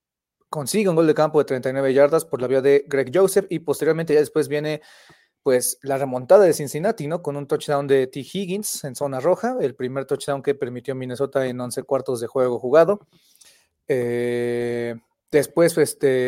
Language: Spanish